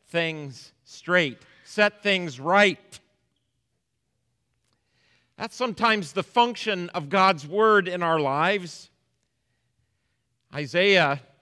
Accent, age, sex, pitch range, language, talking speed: American, 40-59, male, 160-210 Hz, English, 85 wpm